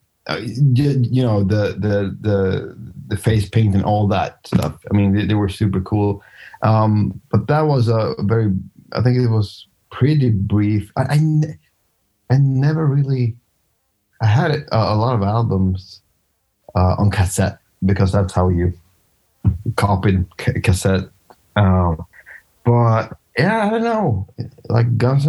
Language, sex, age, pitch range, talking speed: English, male, 30-49, 95-115 Hz, 140 wpm